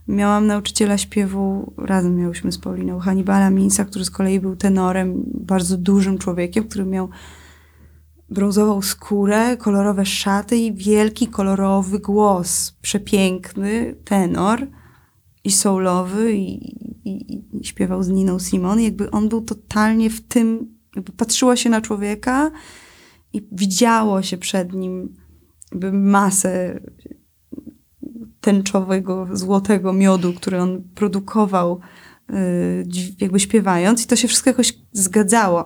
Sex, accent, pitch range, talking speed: female, native, 185-215 Hz, 120 wpm